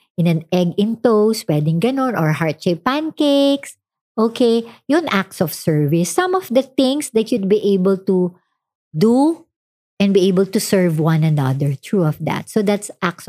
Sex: male